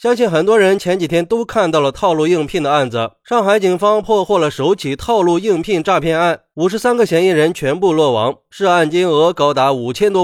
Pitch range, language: 145-195 Hz, Chinese